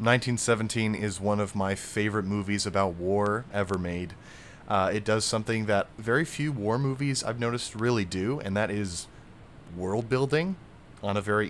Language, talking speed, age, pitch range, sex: English, 165 wpm, 30-49, 95-110 Hz, male